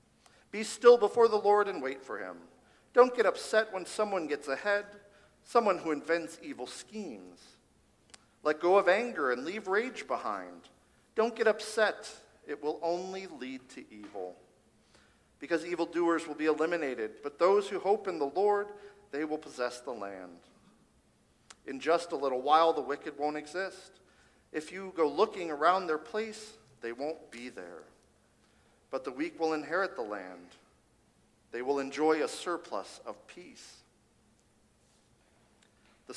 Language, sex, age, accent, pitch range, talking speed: English, male, 50-69, American, 145-205 Hz, 150 wpm